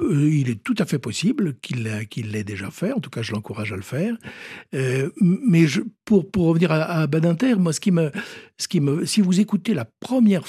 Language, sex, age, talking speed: French, male, 60-79, 190 wpm